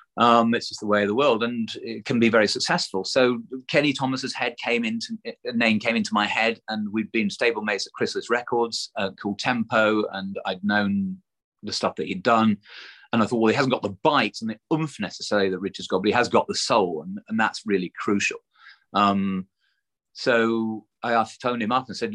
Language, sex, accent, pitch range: English, male, British, 105-125 Hz